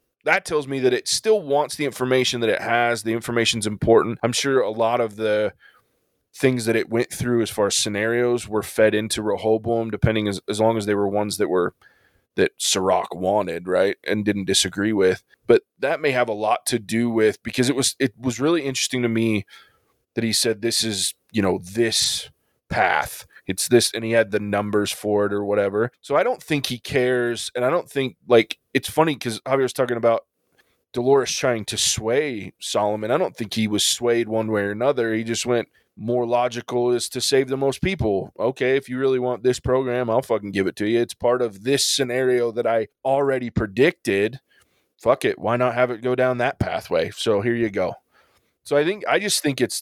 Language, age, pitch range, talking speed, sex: English, 20-39, 110-130 Hz, 215 wpm, male